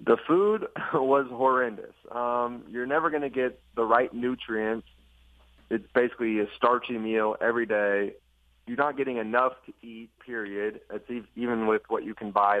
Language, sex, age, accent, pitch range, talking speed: English, male, 30-49, American, 100-125 Hz, 160 wpm